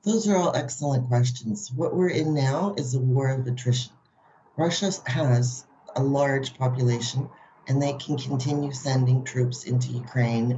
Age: 40-59